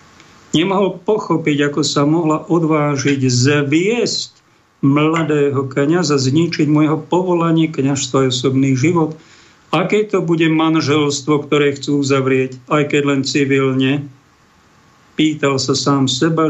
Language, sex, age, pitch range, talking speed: Slovak, male, 50-69, 130-170 Hz, 115 wpm